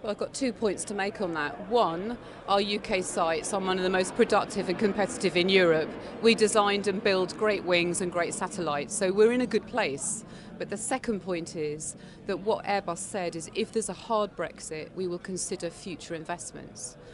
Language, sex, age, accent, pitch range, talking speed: English, female, 30-49, British, 170-210 Hz, 200 wpm